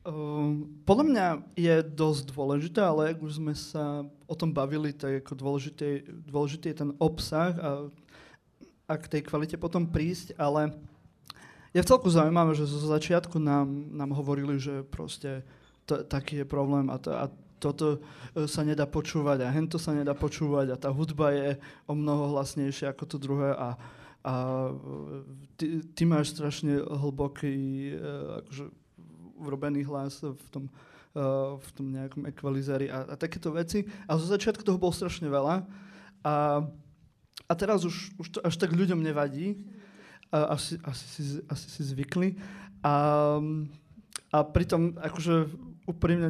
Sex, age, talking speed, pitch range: male, 30-49, 150 wpm, 145-170 Hz